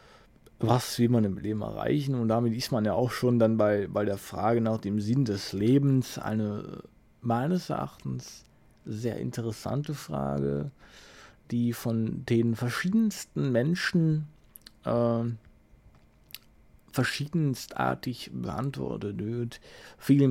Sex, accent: male, German